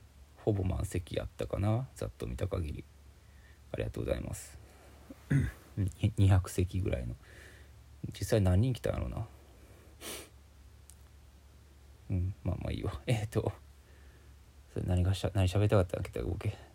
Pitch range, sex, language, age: 75-105 Hz, male, Japanese, 20-39